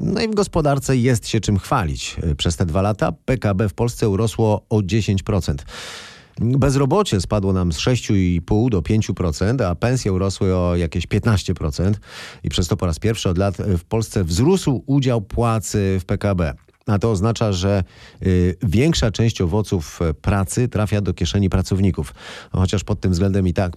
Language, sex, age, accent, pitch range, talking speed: Polish, male, 30-49, native, 90-110 Hz, 165 wpm